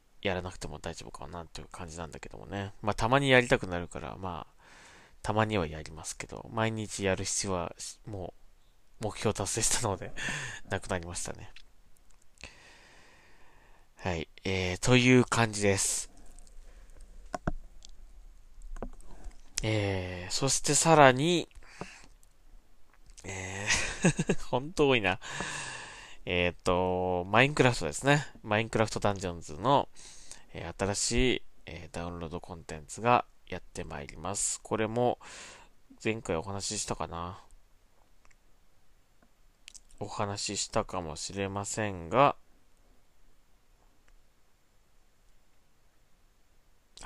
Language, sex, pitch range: Japanese, male, 90-115 Hz